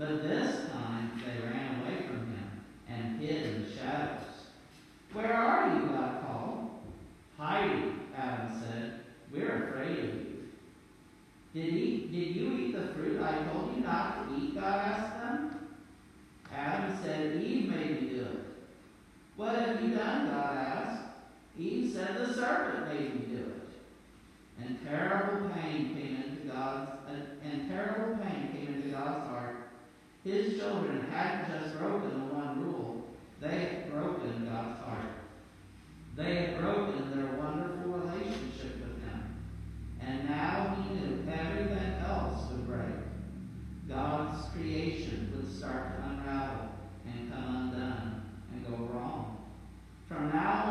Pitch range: 115-160 Hz